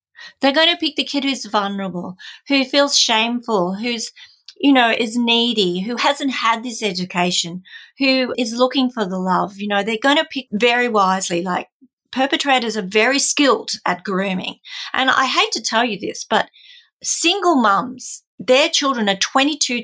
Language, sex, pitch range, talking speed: English, female, 195-270 Hz, 170 wpm